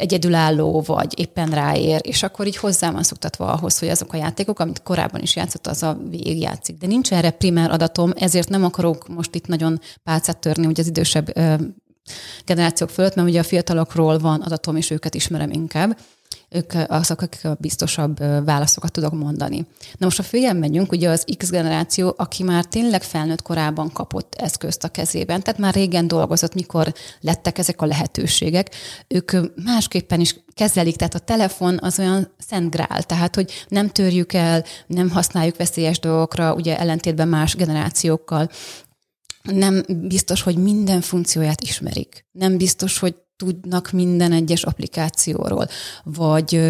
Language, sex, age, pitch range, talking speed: Hungarian, female, 30-49, 160-180 Hz, 160 wpm